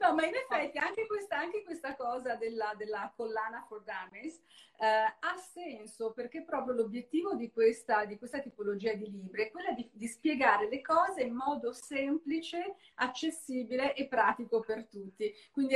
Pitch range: 210-290 Hz